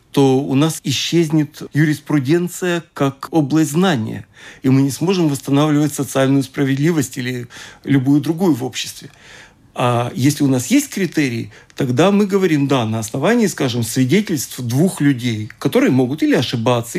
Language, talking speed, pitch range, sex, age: Russian, 140 wpm, 130-165 Hz, male, 40-59